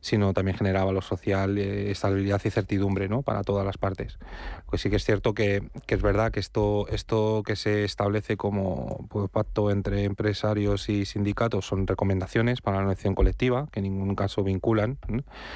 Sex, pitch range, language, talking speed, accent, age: male, 100-110 Hz, Spanish, 180 wpm, Spanish, 30-49